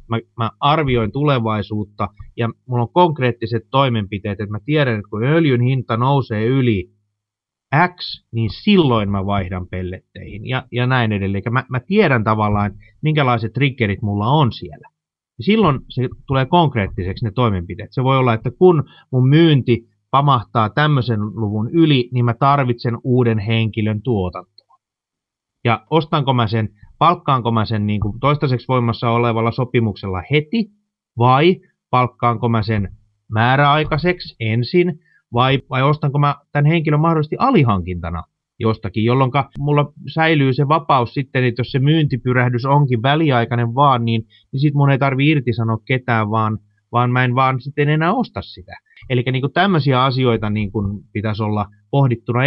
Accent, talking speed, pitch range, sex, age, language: native, 145 wpm, 110-140 Hz, male, 30-49, Finnish